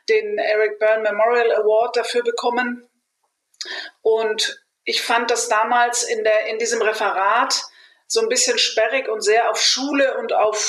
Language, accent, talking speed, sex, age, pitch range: German, German, 145 wpm, female, 40-59, 230-260 Hz